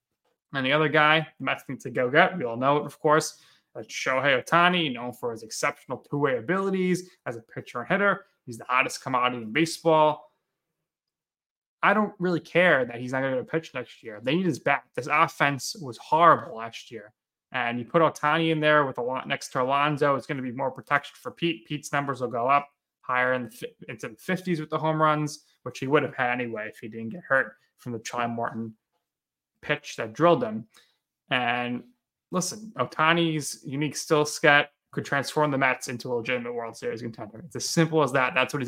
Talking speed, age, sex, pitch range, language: 210 wpm, 20-39, male, 125-160 Hz, English